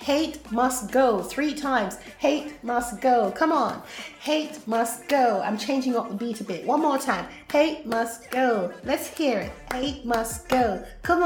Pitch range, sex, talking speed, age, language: 220-280 Hz, female, 175 wpm, 30-49, English